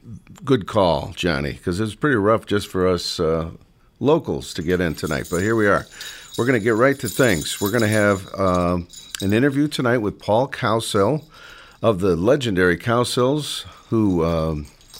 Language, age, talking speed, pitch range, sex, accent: English, 50-69, 175 wpm, 90-130 Hz, male, American